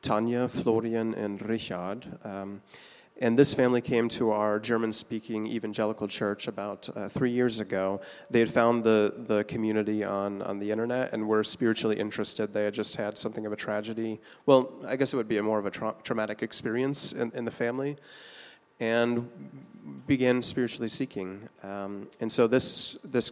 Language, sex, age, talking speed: English, male, 30-49, 170 wpm